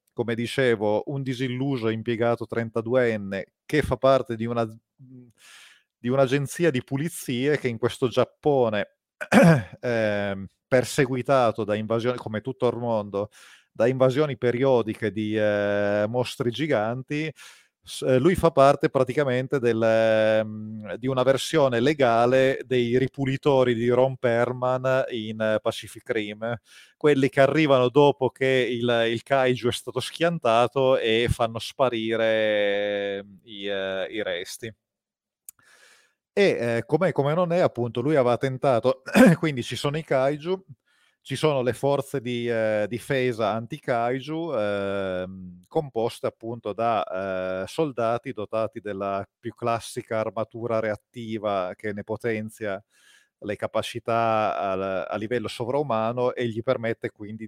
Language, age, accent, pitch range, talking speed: Italian, 30-49, native, 105-130 Hz, 120 wpm